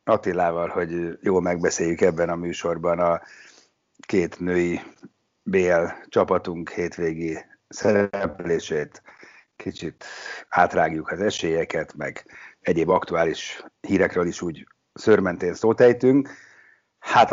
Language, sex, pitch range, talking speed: Hungarian, male, 85-100 Hz, 95 wpm